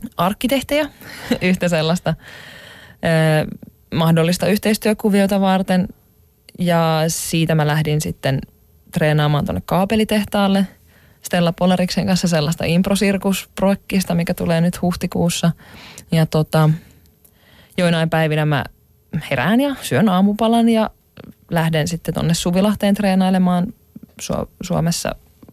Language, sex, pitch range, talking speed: Finnish, female, 155-190 Hz, 95 wpm